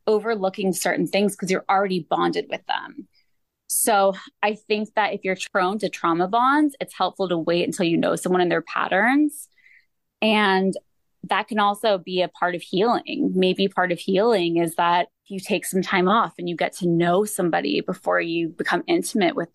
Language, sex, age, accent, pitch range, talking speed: English, female, 20-39, American, 170-205 Hz, 185 wpm